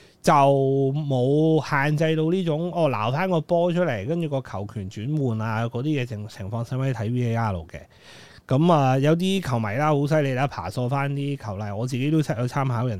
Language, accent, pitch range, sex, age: Chinese, native, 110-155 Hz, male, 30-49